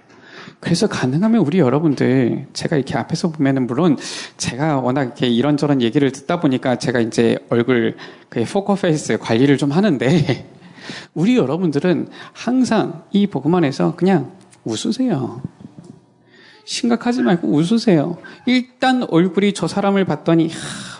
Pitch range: 150-215 Hz